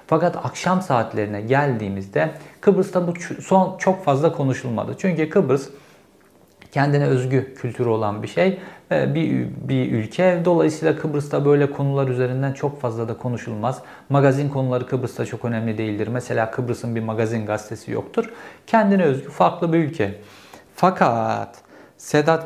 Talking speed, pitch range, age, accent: 130 wpm, 115-145 Hz, 50-69, native